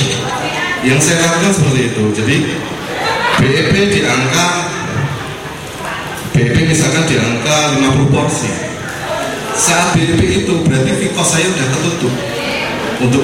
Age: 20-39